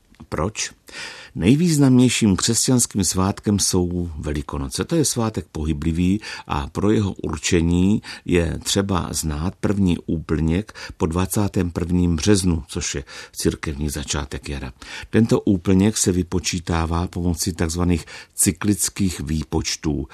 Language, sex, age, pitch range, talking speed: Czech, male, 50-69, 75-95 Hz, 105 wpm